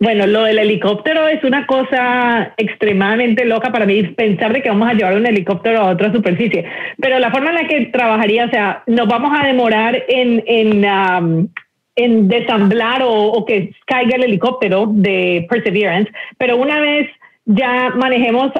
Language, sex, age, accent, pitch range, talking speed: Spanish, female, 40-59, Colombian, 205-250 Hz, 170 wpm